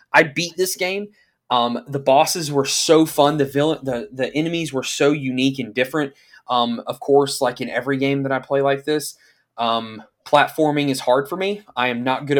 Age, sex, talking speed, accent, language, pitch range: 20-39, male, 205 wpm, American, English, 135-170 Hz